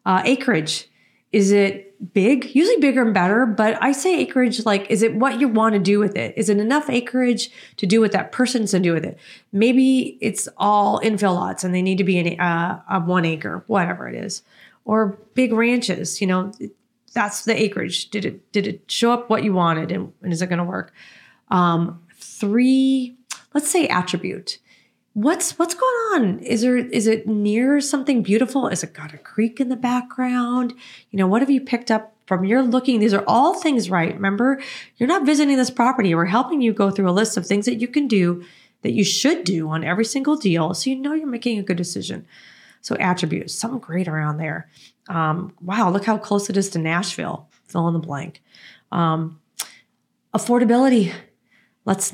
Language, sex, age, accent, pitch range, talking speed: English, female, 30-49, American, 185-250 Hz, 200 wpm